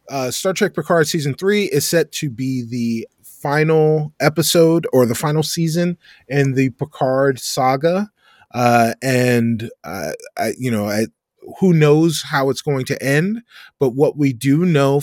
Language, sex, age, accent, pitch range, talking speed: English, male, 30-49, American, 125-160 Hz, 160 wpm